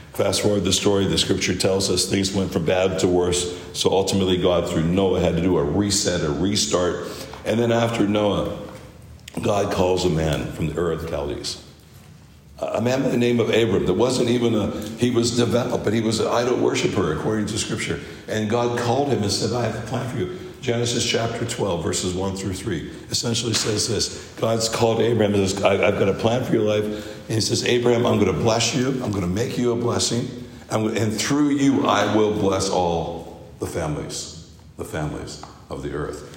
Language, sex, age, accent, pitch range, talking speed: English, male, 60-79, American, 95-115 Hz, 210 wpm